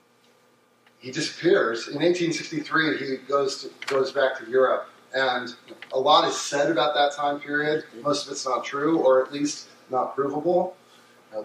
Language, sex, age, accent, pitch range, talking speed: English, male, 30-49, American, 130-170 Hz, 160 wpm